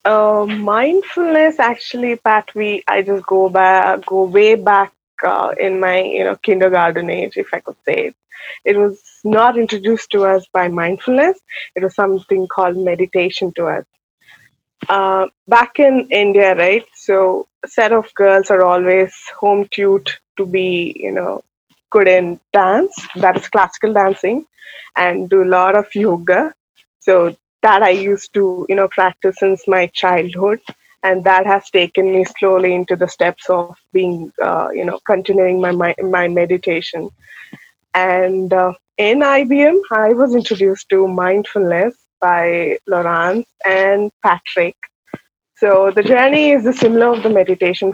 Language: English